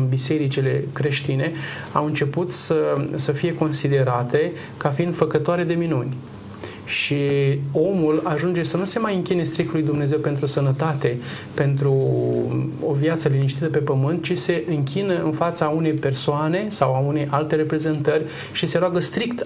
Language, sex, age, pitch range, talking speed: Romanian, male, 30-49, 140-165 Hz, 150 wpm